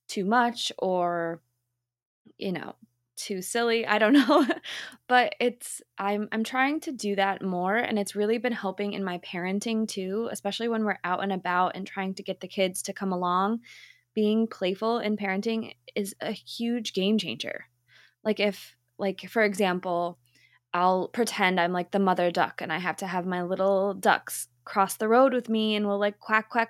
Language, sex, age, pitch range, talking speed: English, female, 20-39, 185-225 Hz, 190 wpm